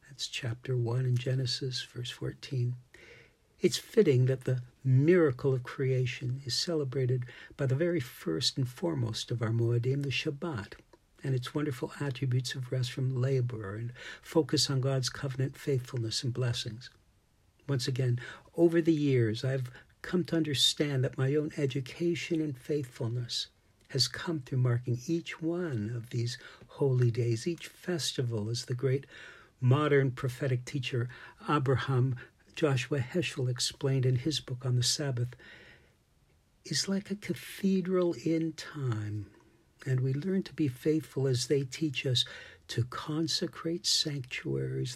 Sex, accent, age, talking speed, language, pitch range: male, American, 60-79, 140 wpm, English, 120-145 Hz